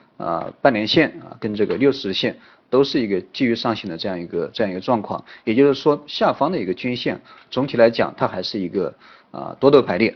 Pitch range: 105-130 Hz